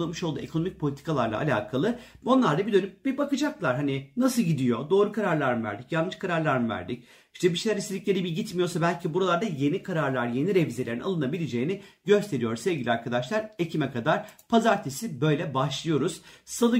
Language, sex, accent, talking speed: Turkish, male, native, 155 wpm